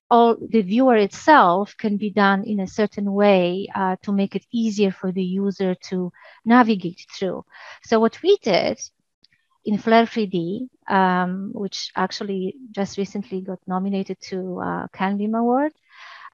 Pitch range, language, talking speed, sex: 190-225 Hz, English, 145 wpm, female